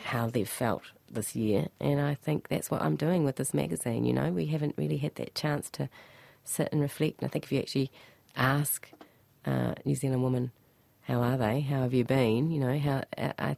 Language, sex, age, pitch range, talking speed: English, female, 30-49, 125-155 Hz, 215 wpm